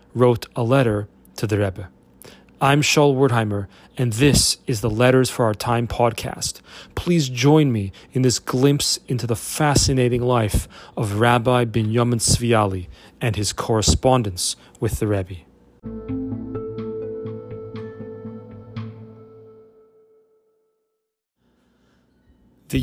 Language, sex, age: English, male, 30-49